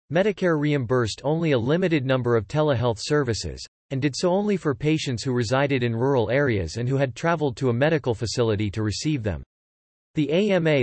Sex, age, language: male, 40-59, English